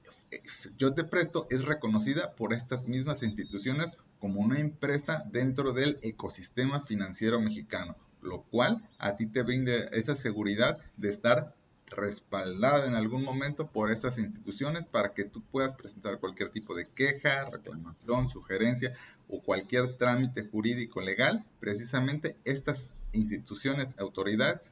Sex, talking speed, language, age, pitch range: male, 130 wpm, Spanish, 30-49, 110-145 Hz